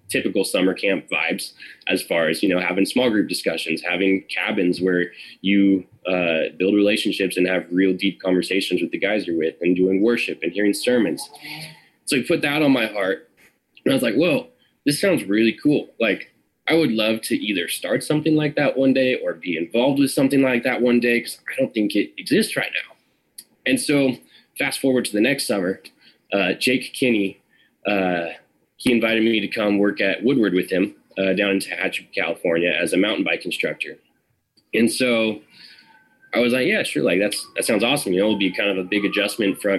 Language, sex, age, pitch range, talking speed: English, male, 20-39, 95-125 Hz, 205 wpm